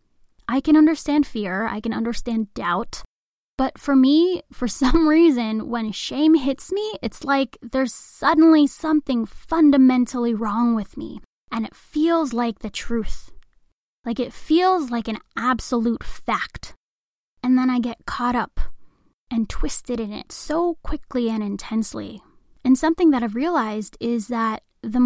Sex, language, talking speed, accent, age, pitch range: female, English, 150 wpm, American, 10-29, 225-285 Hz